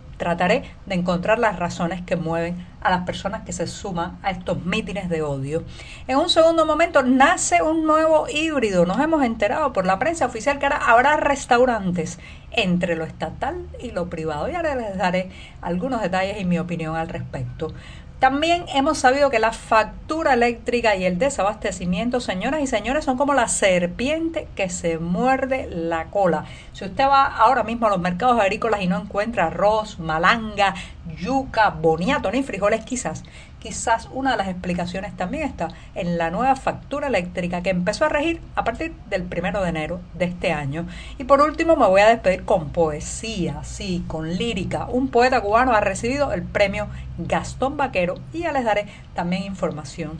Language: Spanish